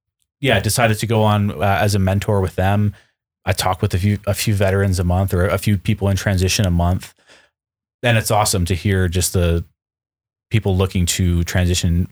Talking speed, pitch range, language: 200 wpm, 90-105 Hz, English